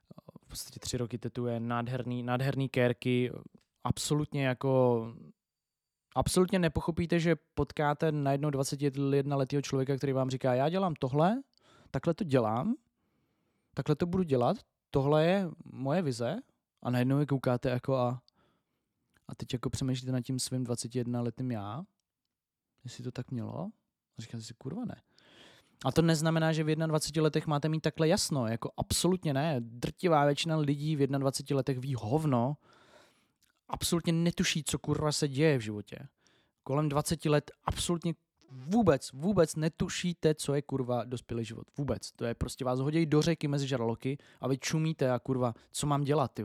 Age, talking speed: 20-39, 150 wpm